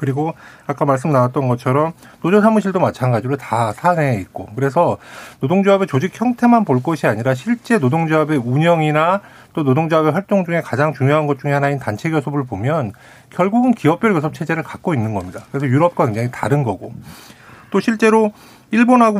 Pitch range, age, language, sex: 135-185 Hz, 40-59, Korean, male